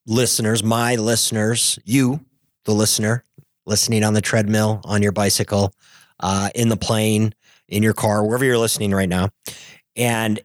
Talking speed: 150 wpm